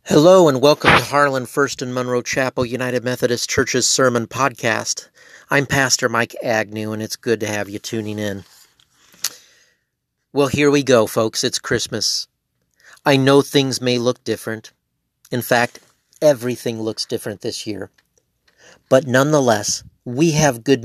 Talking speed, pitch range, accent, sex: 145 wpm, 115-140 Hz, American, male